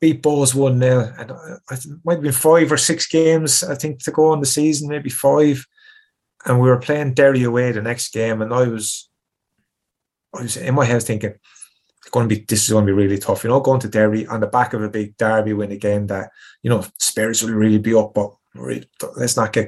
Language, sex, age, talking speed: English, male, 20-39, 235 wpm